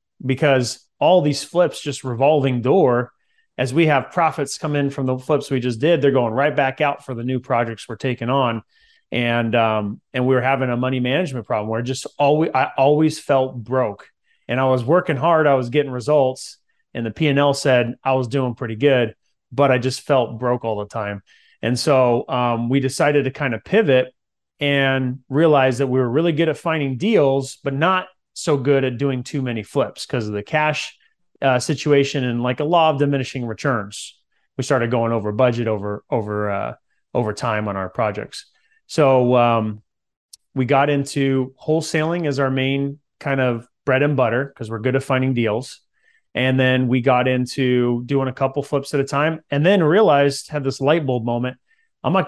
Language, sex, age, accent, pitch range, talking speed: English, male, 30-49, American, 125-145 Hz, 195 wpm